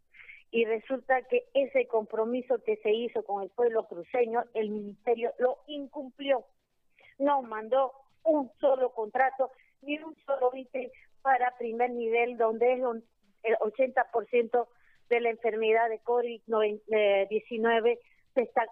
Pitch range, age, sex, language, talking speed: 230-280 Hz, 40-59, female, Spanish, 120 wpm